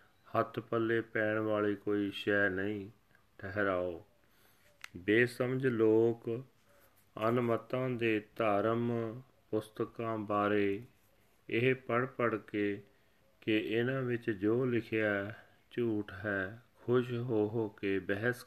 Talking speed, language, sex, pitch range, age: 100 wpm, Punjabi, male, 100-115 Hz, 40-59